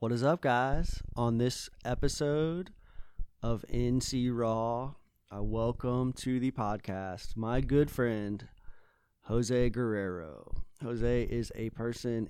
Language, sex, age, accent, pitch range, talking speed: English, male, 30-49, American, 110-130 Hz, 115 wpm